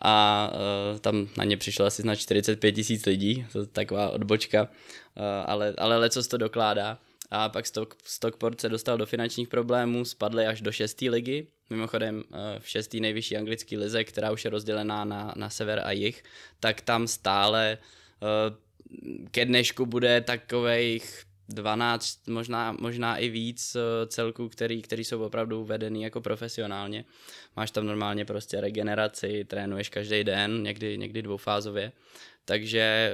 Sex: male